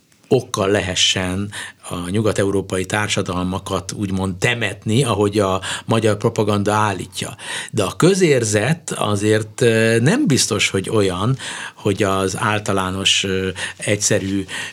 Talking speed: 100 wpm